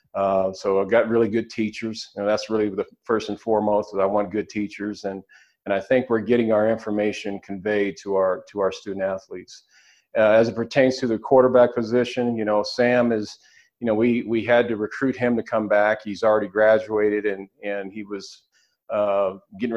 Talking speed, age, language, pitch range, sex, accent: 195 wpm, 40-59, English, 100-110 Hz, male, American